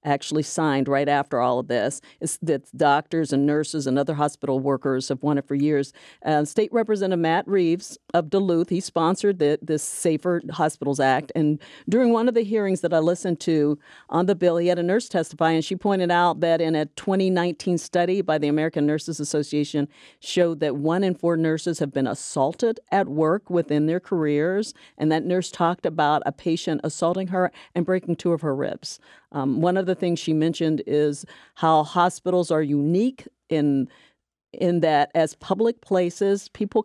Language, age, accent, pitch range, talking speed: English, 50-69, American, 150-185 Hz, 185 wpm